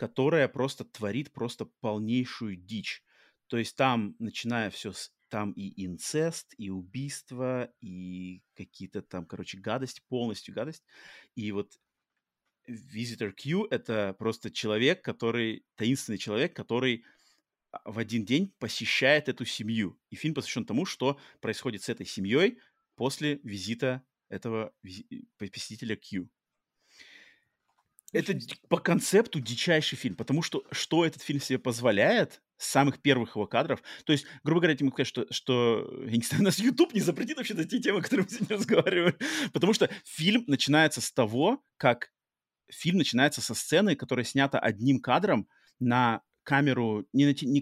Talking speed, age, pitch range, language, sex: 145 wpm, 30-49, 110-145 Hz, Russian, male